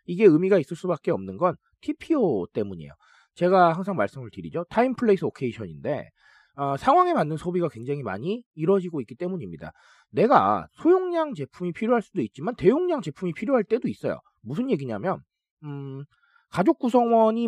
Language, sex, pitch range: Korean, male, 150-240 Hz